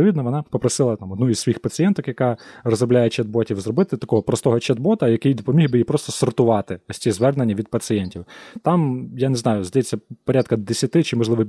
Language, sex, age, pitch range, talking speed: Ukrainian, male, 20-39, 110-140 Hz, 180 wpm